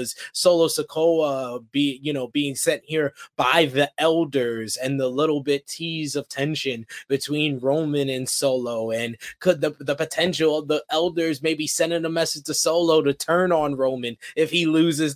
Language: English